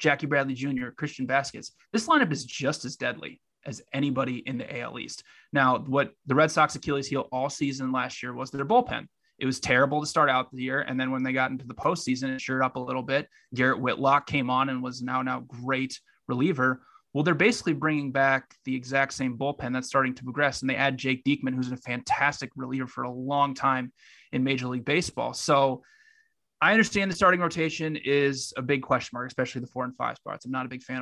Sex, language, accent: male, English, American